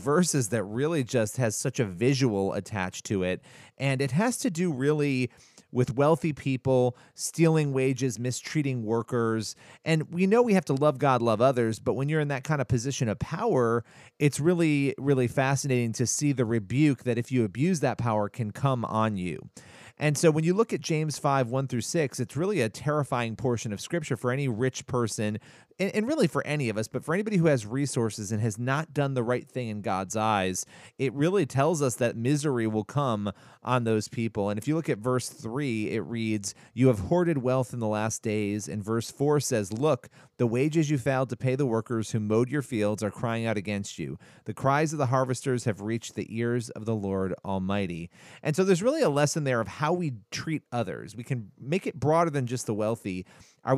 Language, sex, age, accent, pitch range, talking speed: English, male, 30-49, American, 115-145 Hz, 215 wpm